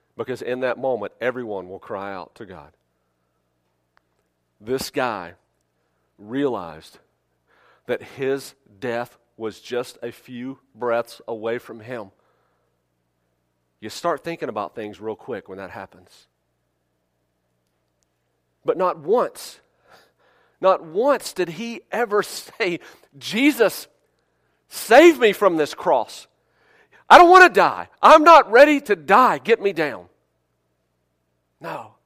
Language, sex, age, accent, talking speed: English, male, 40-59, American, 120 wpm